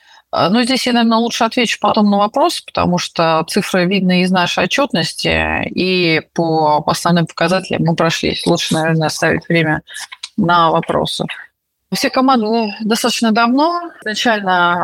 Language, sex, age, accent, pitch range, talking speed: Russian, female, 30-49, native, 170-220 Hz, 135 wpm